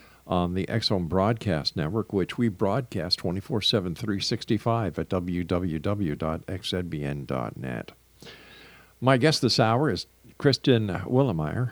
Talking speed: 95 wpm